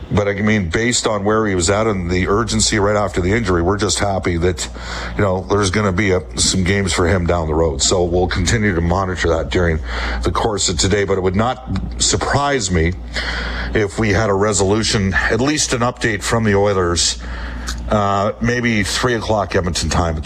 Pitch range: 85-110 Hz